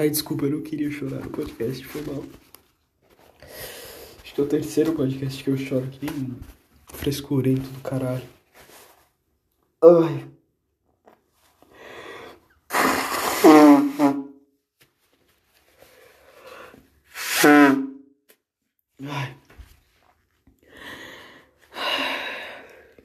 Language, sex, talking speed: Portuguese, male, 70 wpm